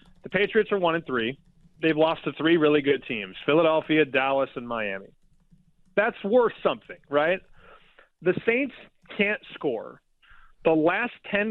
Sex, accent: male, American